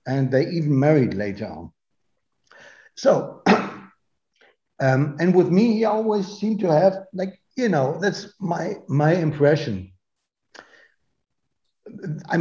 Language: English